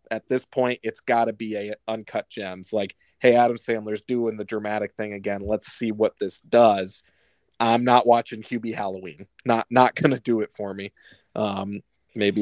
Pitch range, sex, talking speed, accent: 110-130 Hz, male, 190 wpm, American